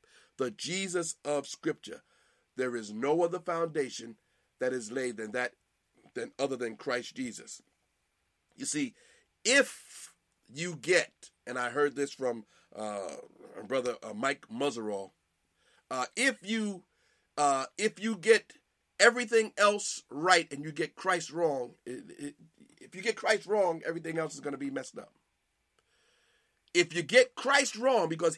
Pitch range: 165-270 Hz